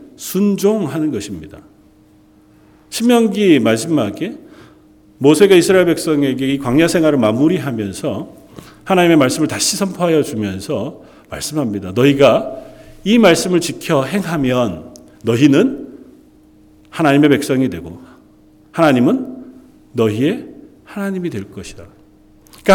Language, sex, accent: Korean, male, native